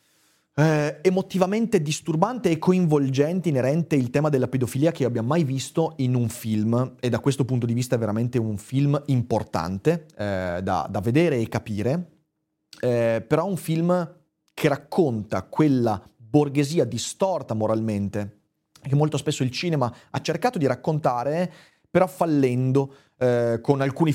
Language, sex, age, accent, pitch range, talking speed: Italian, male, 30-49, native, 120-155 Hz, 145 wpm